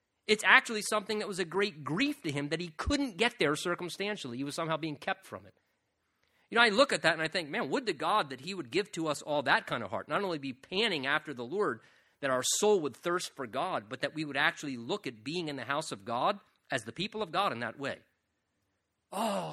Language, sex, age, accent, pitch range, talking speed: English, male, 40-59, American, 140-215 Hz, 255 wpm